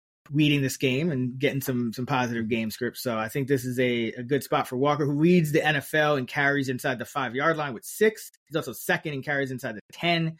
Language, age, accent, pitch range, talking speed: English, 30-49, American, 130-160 Hz, 240 wpm